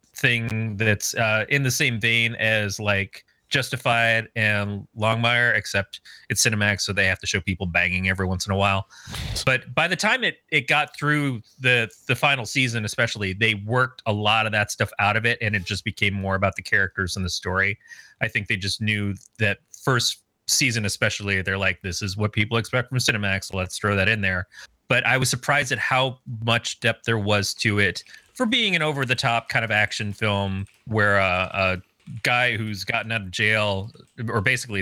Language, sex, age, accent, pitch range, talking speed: English, male, 30-49, American, 100-120 Hz, 200 wpm